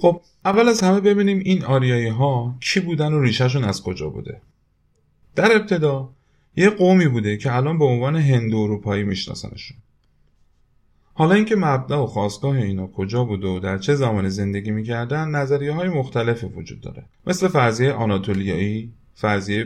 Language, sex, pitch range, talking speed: Persian, male, 100-145 Hz, 160 wpm